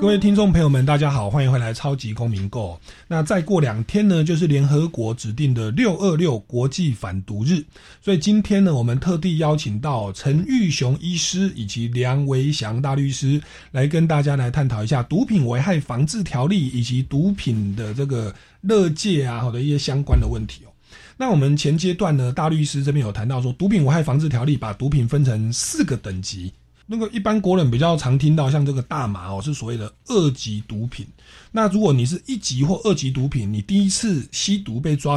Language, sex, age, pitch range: Chinese, male, 30-49, 115-165 Hz